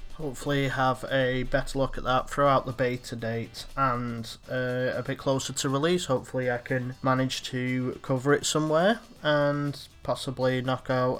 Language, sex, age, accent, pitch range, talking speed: English, male, 20-39, British, 125-140 Hz, 160 wpm